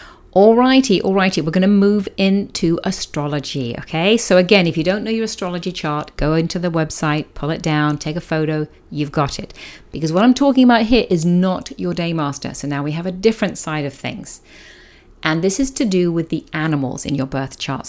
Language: English